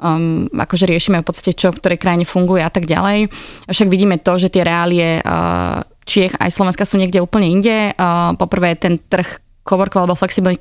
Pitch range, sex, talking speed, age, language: 170-190 Hz, female, 190 wpm, 20-39, Slovak